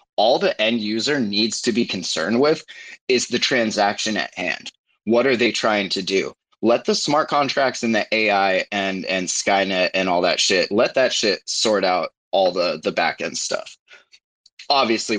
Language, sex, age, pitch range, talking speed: English, male, 20-39, 95-110 Hz, 180 wpm